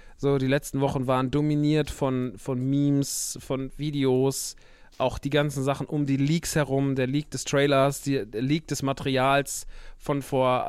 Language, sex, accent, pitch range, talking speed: German, male, German, 125-145 Hz, 165 wpm